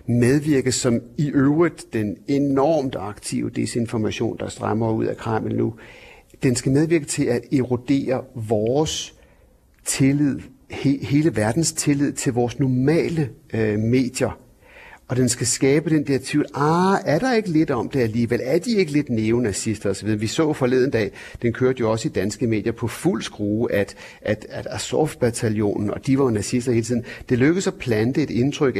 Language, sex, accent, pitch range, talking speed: Danish, male, native, 110-150 Hz, 170 wpm